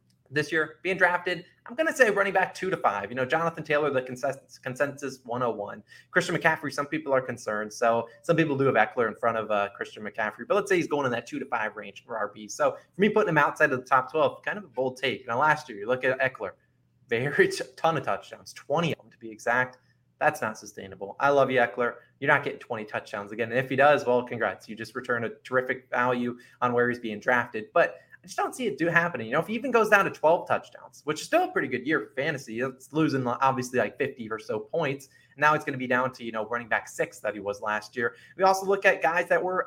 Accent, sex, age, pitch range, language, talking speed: American, male, 20-39, 125-180 Hz, English, 260 wpm